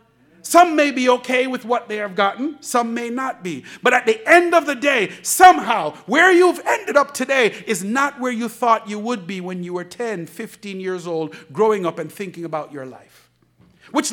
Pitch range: 180-255 Hz